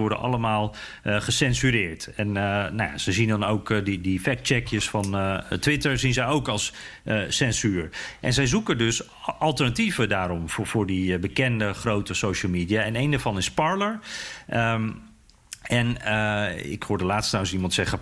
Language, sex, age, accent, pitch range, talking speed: Dutch, male, 40-59, Dutch, 105-135 Hz, 160 wpm